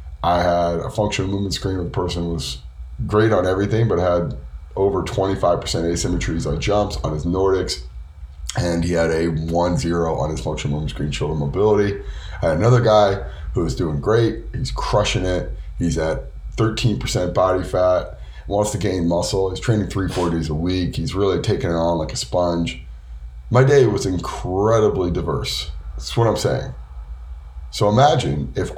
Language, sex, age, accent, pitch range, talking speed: English, male, 30-49, American, 75-120 Hz, 180 wpm